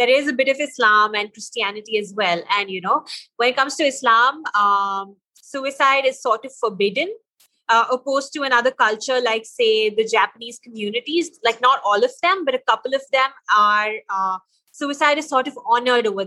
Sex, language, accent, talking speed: female, English, Indian, 190 wpm